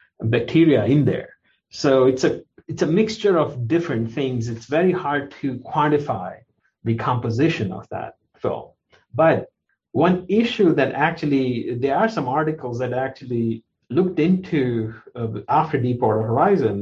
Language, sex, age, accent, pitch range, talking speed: English, male, 50-69, Indian, 115-150 Hz, 145 wpm